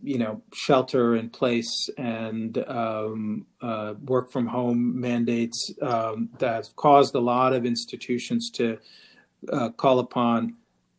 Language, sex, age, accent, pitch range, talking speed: English, male, 40-59, American, 115-135 Hz, 125 wpm